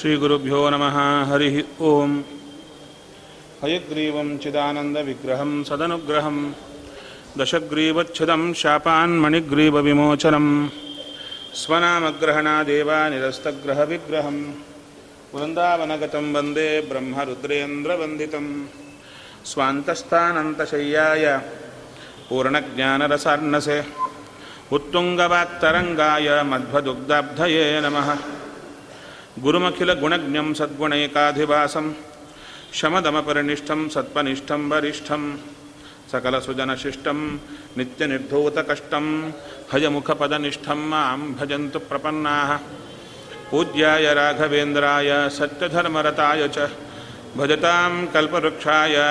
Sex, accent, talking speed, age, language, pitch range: male, native, 40 wpm, 40-59, Kannada, 145-155 Hz